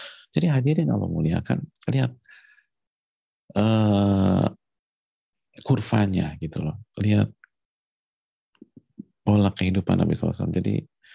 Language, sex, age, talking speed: Indonesian, male, 40-59, 85 wpm